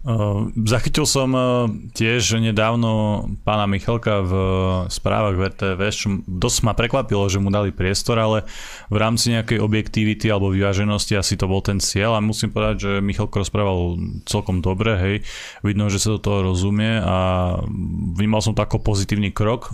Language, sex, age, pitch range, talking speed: Slovak, male, 20-39, 100-110 Hz, 160 wpm